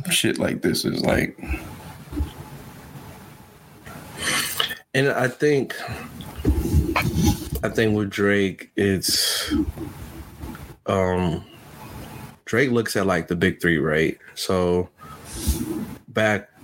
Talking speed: 85 wpm